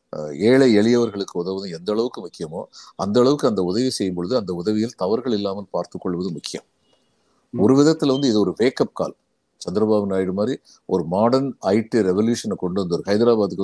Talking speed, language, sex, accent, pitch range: 150 wpm, Tamil, male, native, 95-130 Hz